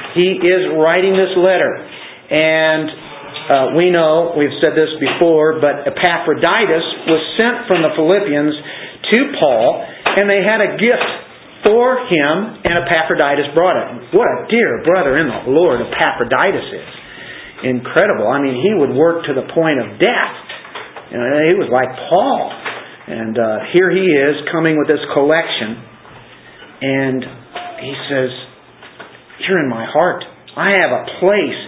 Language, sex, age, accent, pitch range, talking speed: English, male, 50-69, American, 140-185 Hz, 145 wpm